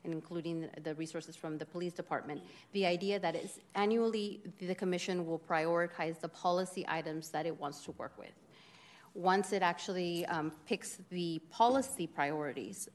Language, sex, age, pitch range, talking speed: English, female, 30-49, 160-185 Hz, 155 wpm